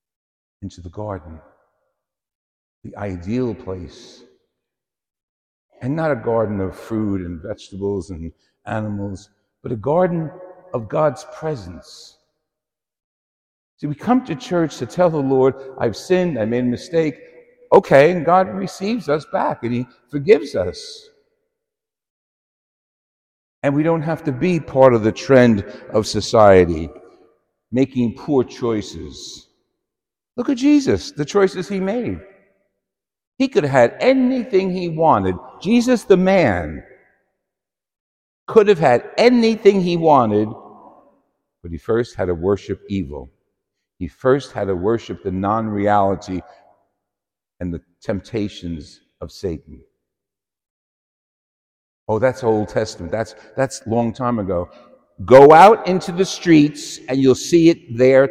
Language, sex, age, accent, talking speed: English, male, 60-79, American, 130 wpm